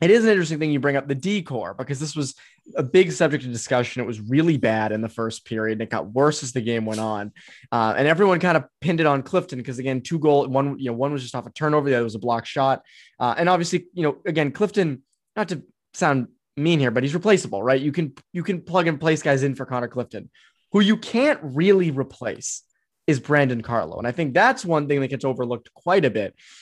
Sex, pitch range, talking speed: male, 125-175 Hz, 250 wpm